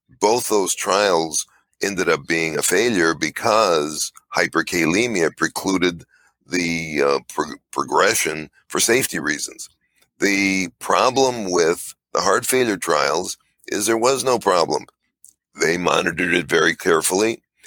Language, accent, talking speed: English, American, 115 wpm